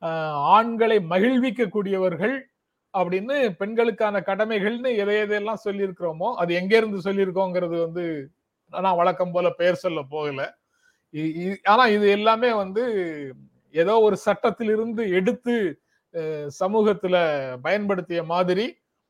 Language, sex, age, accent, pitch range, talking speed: Tamil, male, 30-49, native, 160-210 Hz, 95 wpm